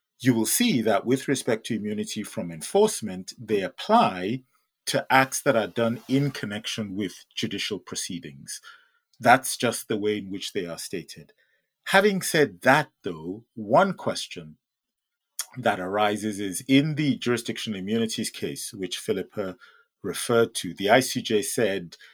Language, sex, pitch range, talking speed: English, male, 95-130 Hz, 140 wpm